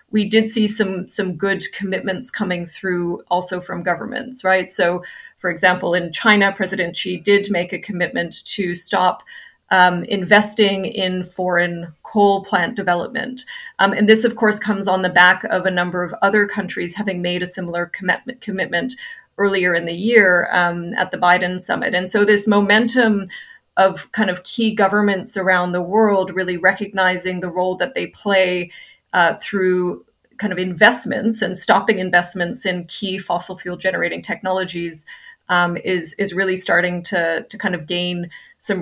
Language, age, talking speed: English, 30-49, 165 wpm